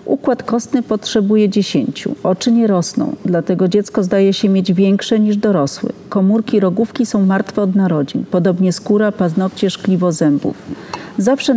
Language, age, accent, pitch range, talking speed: Polish, 40-59, native, 180-215 Hz, 140 wpm